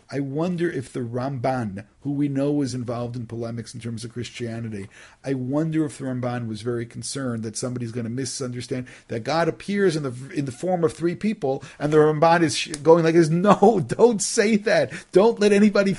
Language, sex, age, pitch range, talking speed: English, male, 50-69, 125-170 Hz, 205 wpm